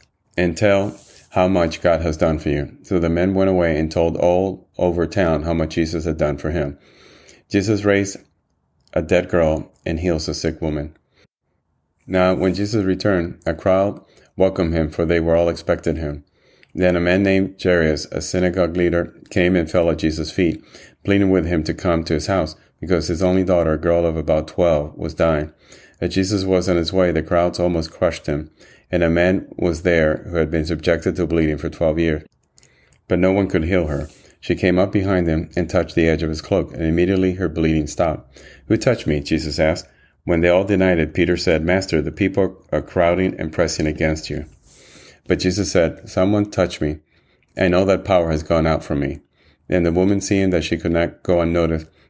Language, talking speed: English, 205 wpm